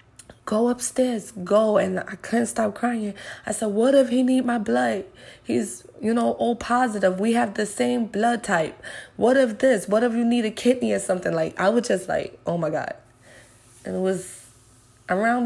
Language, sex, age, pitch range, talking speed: English, female, 20-39, 175-215 Hz, 195 wpm